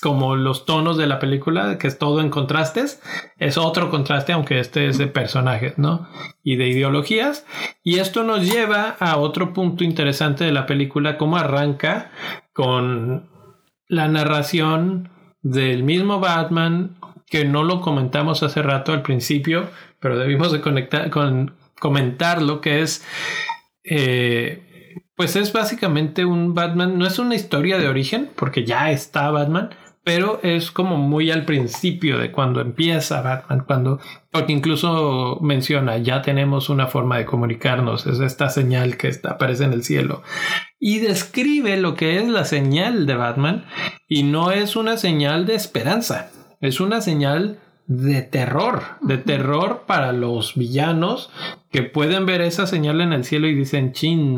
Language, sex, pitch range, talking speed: Spanish, male, 135-175 Hz, 150 wpm